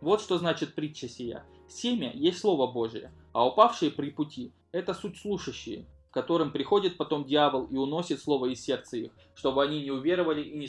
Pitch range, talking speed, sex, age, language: 135-175 Hz, 180 wpm, male, 20-39, Russian